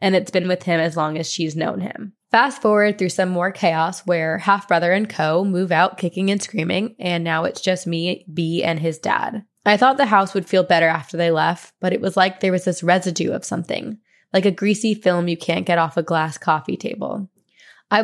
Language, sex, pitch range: English, female, 170-210 Hz